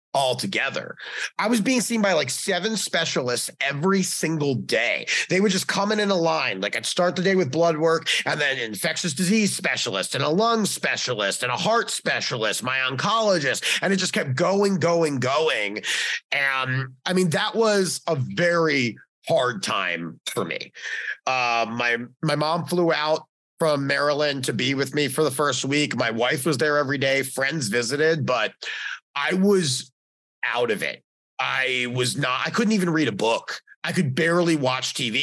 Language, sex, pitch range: English, male, 130-185 Hz